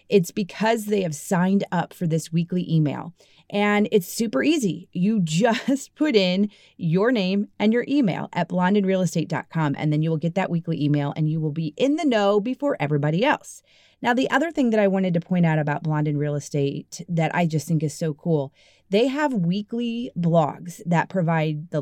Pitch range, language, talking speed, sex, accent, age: 155-215 Hz, English, 195 wpm, female, American, 30-49